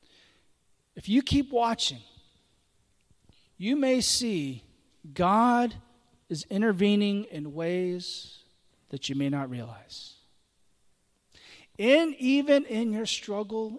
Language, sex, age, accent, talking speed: English, male, 40-59, American, 95 wpm